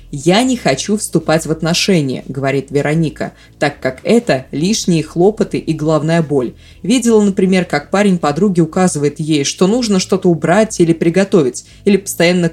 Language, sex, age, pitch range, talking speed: Russian, female, 20-39, 150-195 Hz, 150 wpm